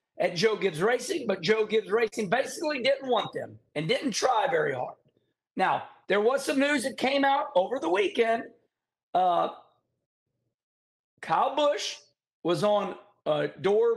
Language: English